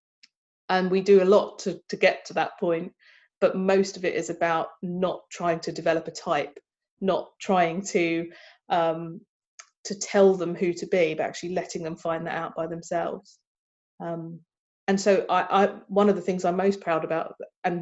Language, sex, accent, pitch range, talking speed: English, female, British, 170-195 Hz, 190 wpm